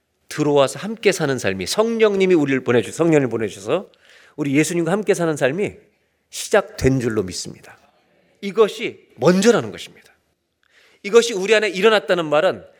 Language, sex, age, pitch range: Korean, male, 40-59, 140-230 Hz